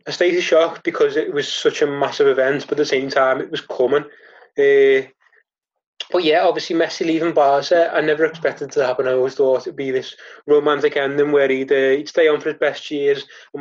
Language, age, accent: English, 20-39, British